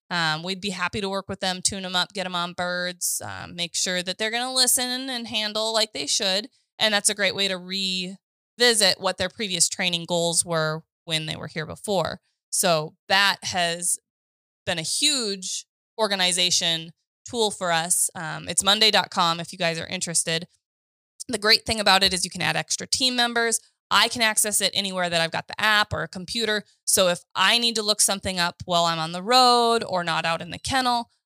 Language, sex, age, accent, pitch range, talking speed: English, female, 20-39, American, 170-210 Hz, 205 wpm